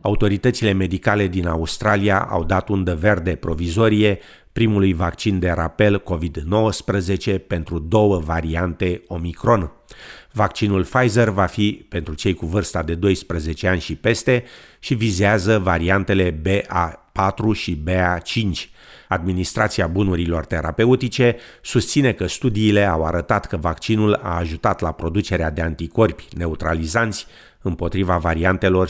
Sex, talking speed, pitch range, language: male, 120 wpm, 85-105 Hz, Romanian